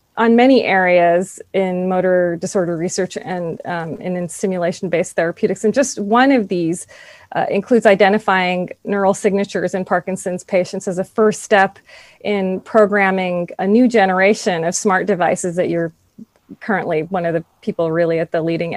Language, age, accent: English, 30-49, American